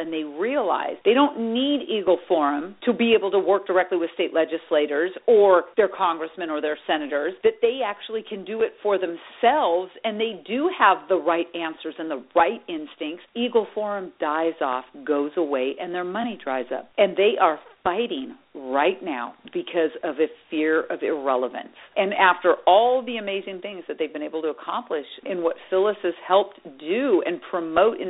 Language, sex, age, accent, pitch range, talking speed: English, female, 50-69, American, 160-220 Hz, 185 wpm